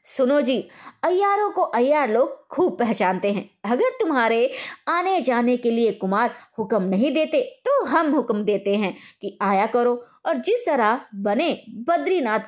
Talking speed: 155 wpm